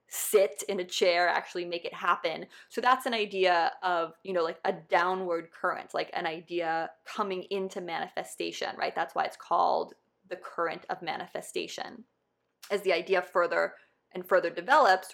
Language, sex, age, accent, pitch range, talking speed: English, female, 20-39, American, 180-255 Hz, 165 wpm